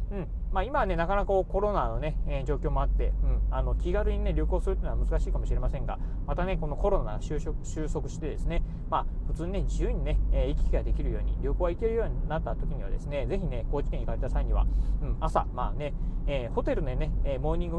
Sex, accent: male, native